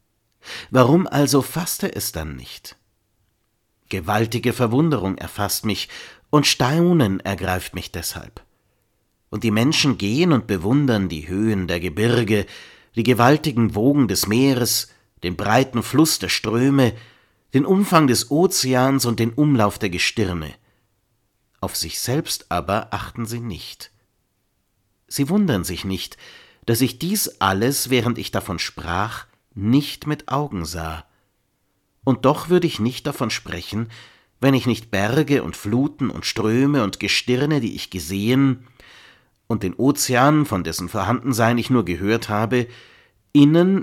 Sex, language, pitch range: male, German, 100-130 Hz